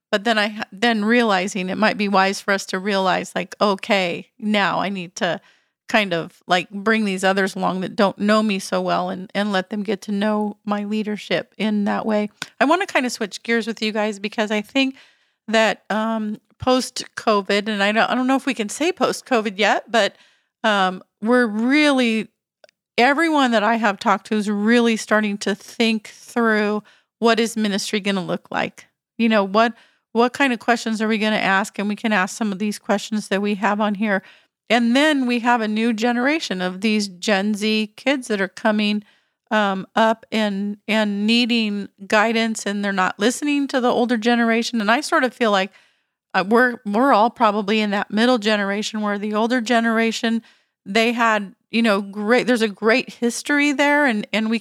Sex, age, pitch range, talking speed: female, 40-59, 205-235 Hz, 200 wpm